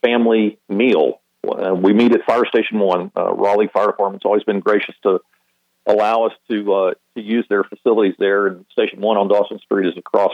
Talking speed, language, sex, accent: 195 wpm, English, male, American